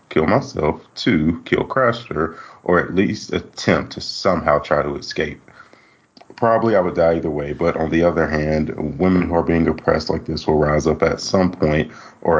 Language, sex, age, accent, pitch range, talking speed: English, male, 30-49, American, 75-90 Hz, 190 wpm